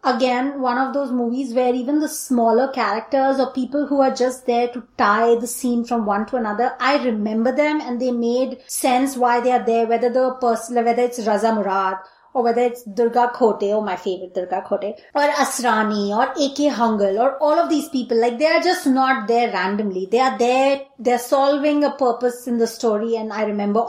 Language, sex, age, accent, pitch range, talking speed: English, female, 20-39, Indian, 235-295 Hz, 205 wpm